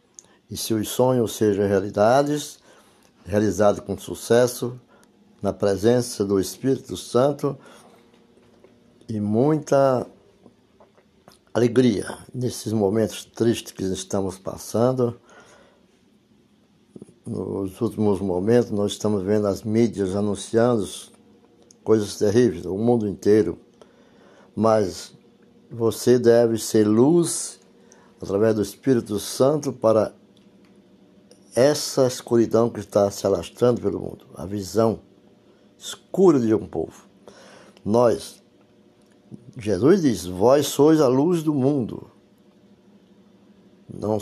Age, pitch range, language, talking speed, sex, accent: 60-79, 100-120 Hz, Portuguese, 95 wpm, male, Brazilian